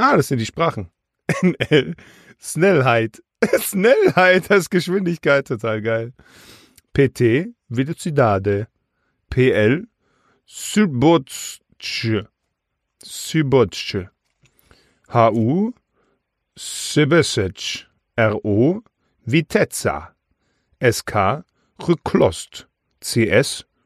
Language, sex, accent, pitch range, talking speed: German, male, German, 110-175 Hz, 65 wpm